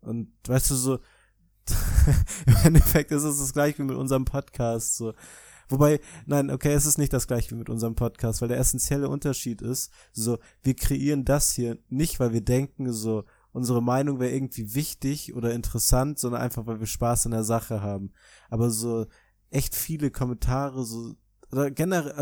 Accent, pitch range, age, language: German, 115-140 Hz, 20-39, German